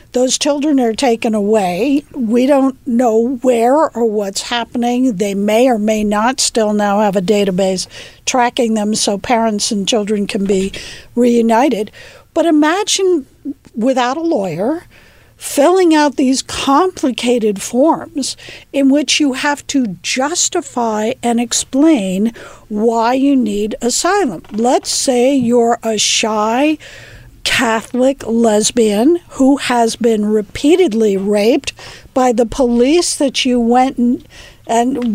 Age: 50-69